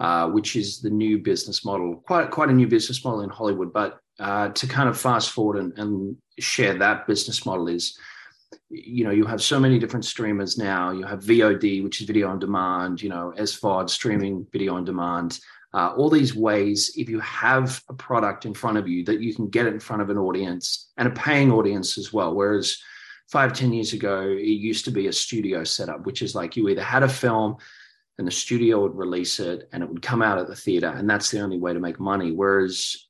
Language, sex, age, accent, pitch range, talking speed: English, male, 30-49, Australian, 95-120 Hz, 225 wpm